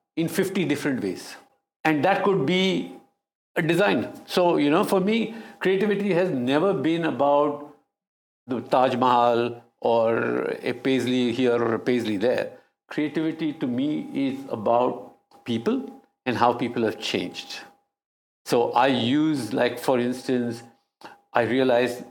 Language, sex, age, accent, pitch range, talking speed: English, male, 60-79, Indian, 125-180 Hz, 135 wpm